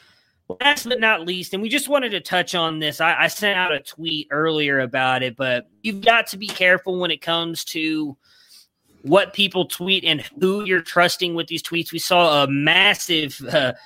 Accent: American